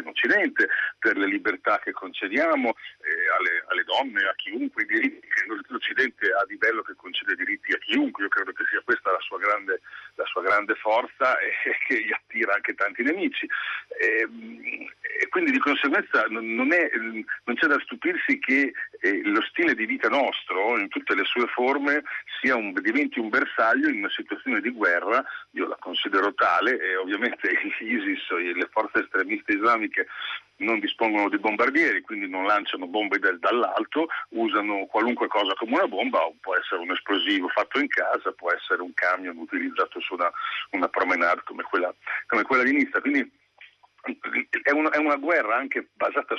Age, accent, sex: 50-69, native, male